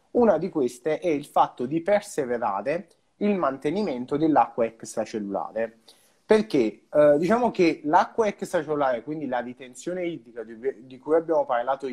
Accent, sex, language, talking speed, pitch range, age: native, male, Italian, 135 wpm, 125-175 Hz, 30-49